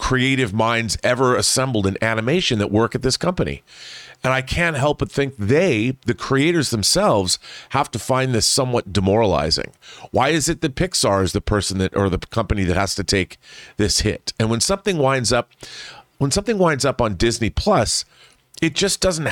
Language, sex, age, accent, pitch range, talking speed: English, male, 40-59, American, 105-140 Hz, 185 wpm